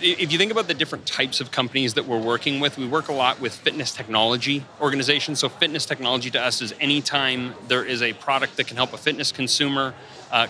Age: 30-49